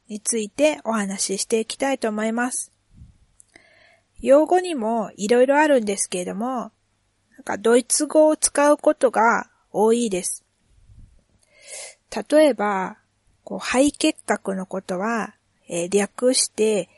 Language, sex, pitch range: Japanese, female, 180-255 Hz